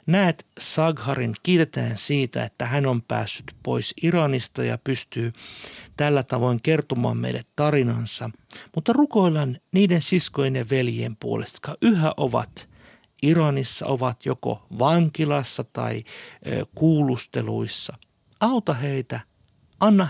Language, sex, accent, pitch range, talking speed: Finnish, male, native, 115-155 Hz, 105 wpm